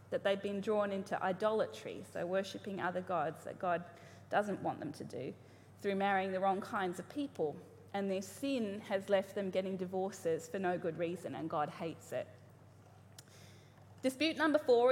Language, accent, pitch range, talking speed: English, Australian, 145-215 Hz, 175 wpm